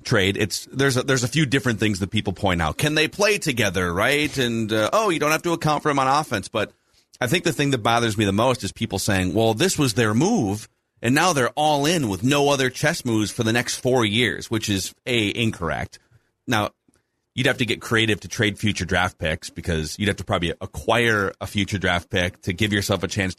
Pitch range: 100-135 Hz